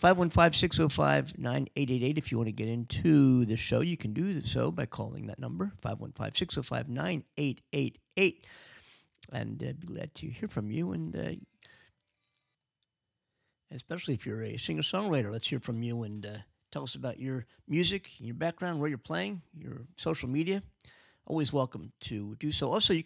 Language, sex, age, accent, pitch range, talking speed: English, male, 50-69, American, 115-155 Hz, 155 wpm